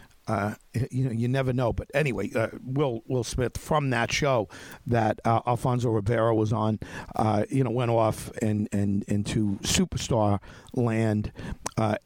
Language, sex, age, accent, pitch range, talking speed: English, male, 50-69, American, 105-130 Hz, 160 wpm